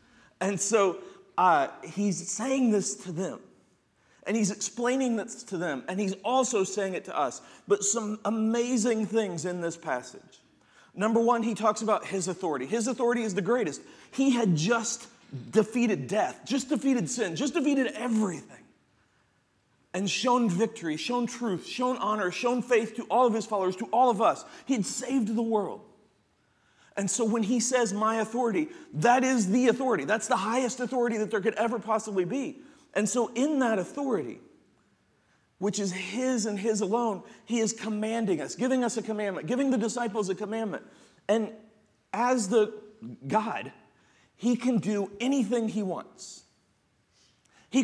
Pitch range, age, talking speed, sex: 205-245 Hz, 40-59, 165 wpm, male